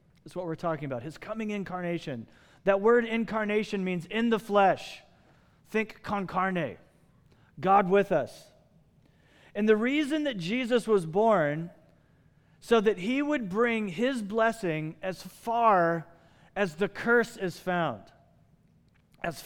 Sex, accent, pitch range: male, American, 165-230 Hz